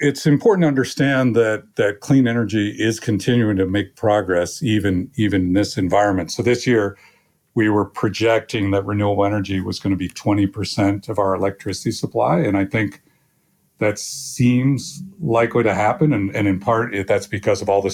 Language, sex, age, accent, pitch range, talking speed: English, male, 50-69, American, 100-125 Hz, 175 wpm